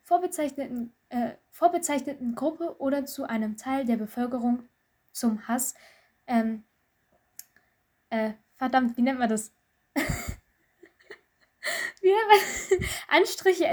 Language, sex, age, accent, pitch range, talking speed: German, female, 10-29, German, 225-290 Hz, 105 wpm